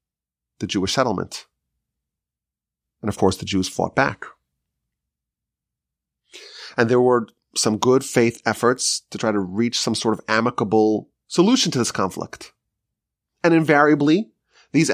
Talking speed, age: 130 wpm, 30-49